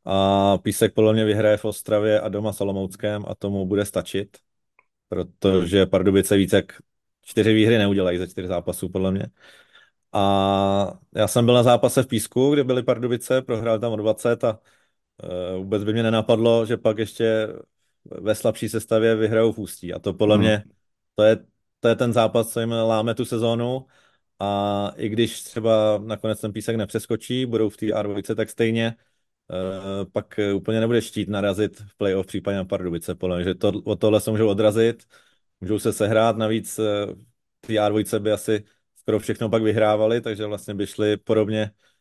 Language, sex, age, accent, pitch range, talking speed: Czech, male, 30-49, native, 100-110 Hz, 170 wpm